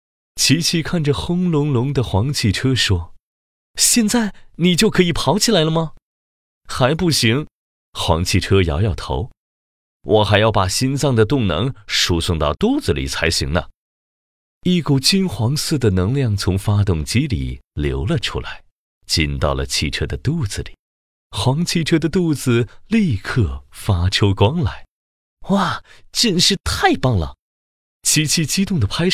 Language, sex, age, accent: Chinese, male, 30-49, native